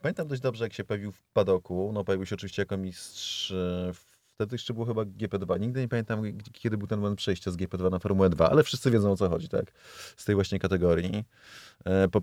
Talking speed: 215 wpm